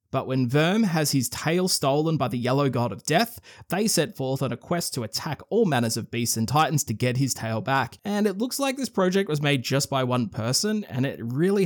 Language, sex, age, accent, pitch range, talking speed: English, male, 20-39, Australian, 125-165 Hz, 240 wpm